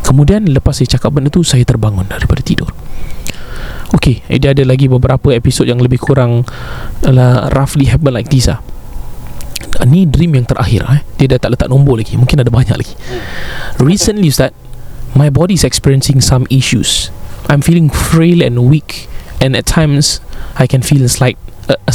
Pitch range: 120-145 Hz